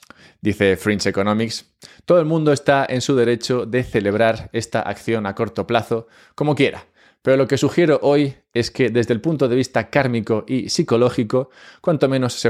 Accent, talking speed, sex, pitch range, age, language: Spanish, 180 wpm, male, 105-130 Hz, 20-39, English